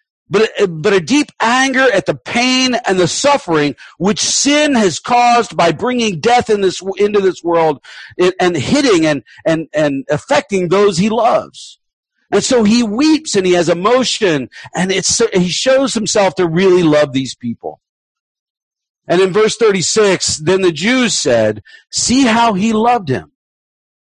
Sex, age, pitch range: male, 50-69, 160-235 Hz